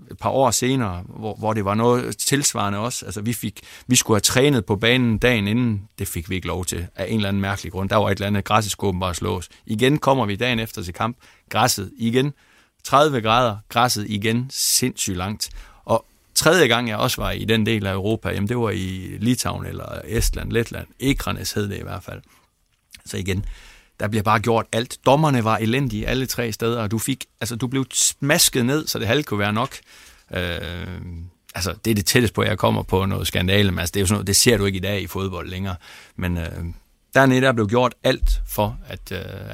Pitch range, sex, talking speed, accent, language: 95-115 Hz, male, 215 wpm, native, Danish